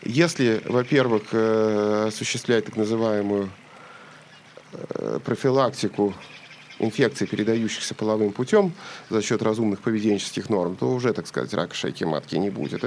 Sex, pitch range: male, 105-125 Hz